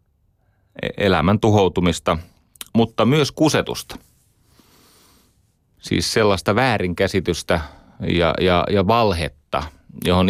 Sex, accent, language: male, native, Finnish